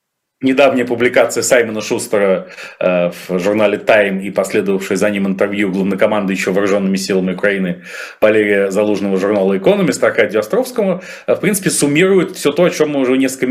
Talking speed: 155 wpm